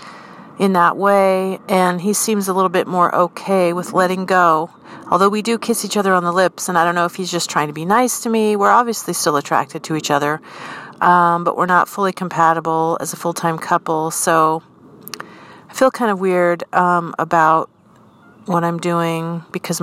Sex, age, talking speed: female, 40-59, 195 wpm